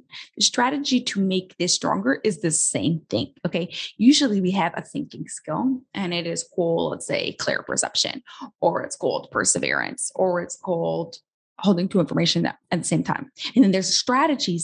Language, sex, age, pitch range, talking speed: English, female, 20-39, 180-260 Hz, 175 wpm